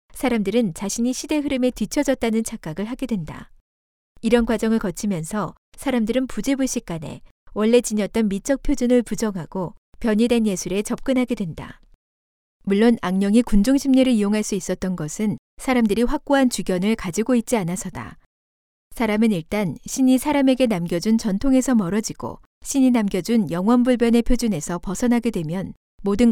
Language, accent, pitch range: Korean, native, 195-250 Hz